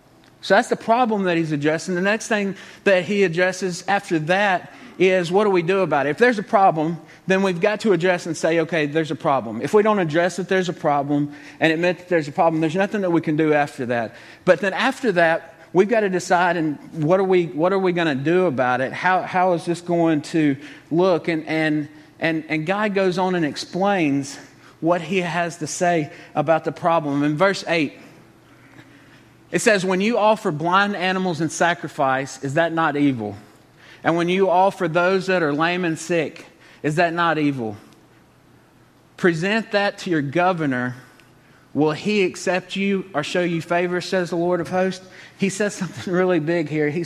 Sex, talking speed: male, 200 wpm